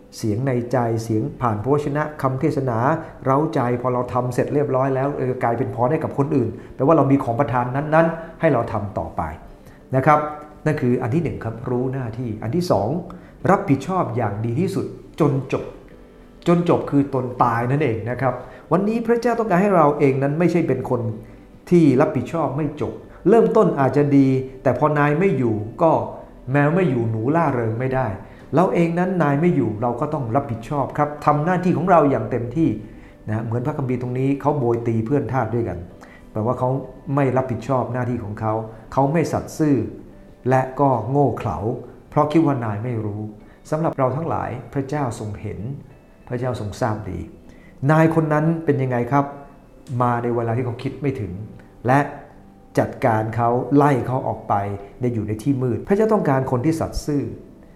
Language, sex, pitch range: English, male, 115-150 Hz